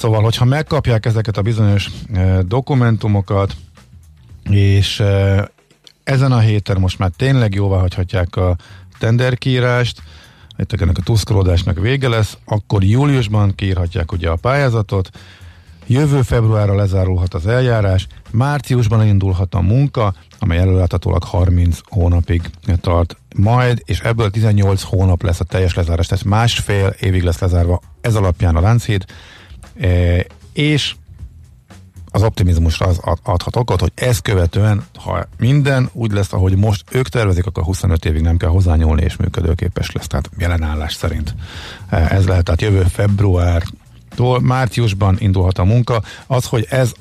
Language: Hungarian